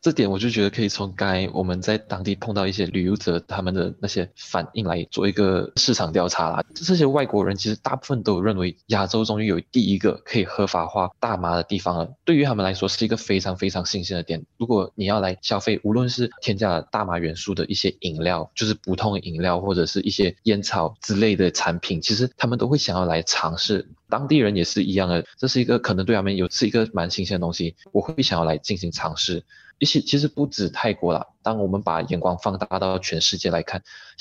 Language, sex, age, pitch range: Chinese, male, 20-39, 90-115 Hz